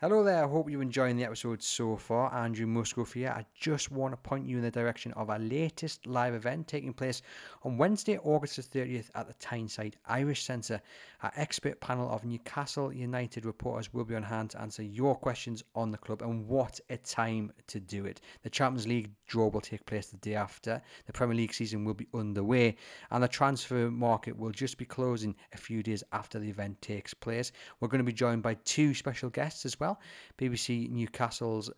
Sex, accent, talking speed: male, British, 210 wpm